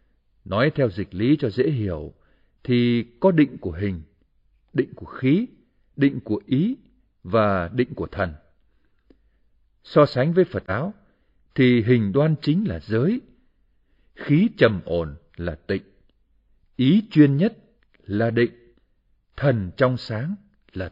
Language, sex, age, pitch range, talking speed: Vietnamese, male, 60-79, 95-140 Hz, 135 wpm